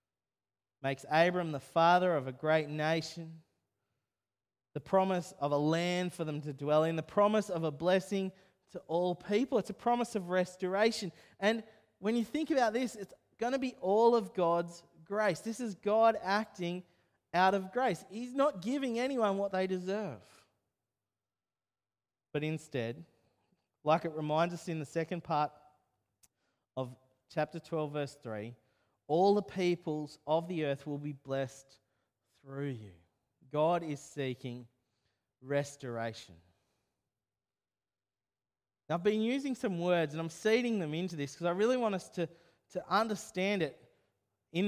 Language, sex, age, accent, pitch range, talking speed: English, male, 20-39, Australian, 120-185 Hz, 150 wpm